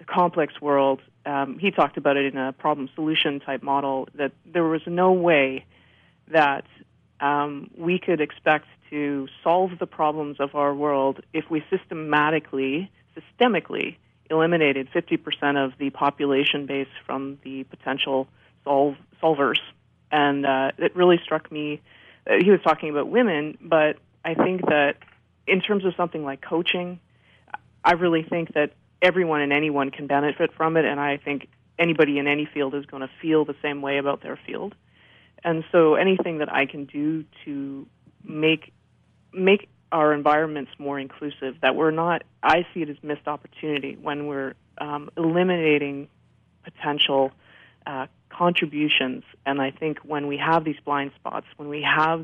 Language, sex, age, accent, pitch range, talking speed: English, female, 30-49, American, 140-165 Hz, 155 wpm